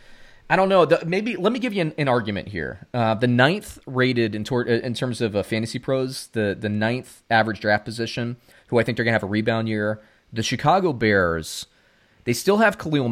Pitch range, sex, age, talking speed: 105-150 Hz, male, 30-49, 210 wpm